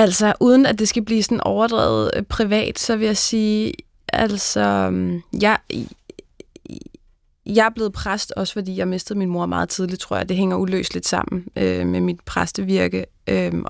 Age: 20-39